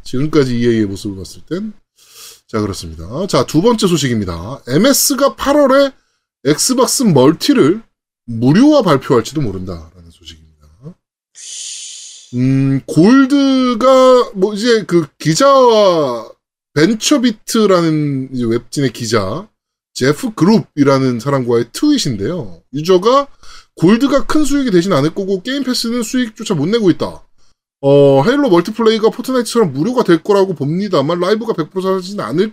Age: 20-39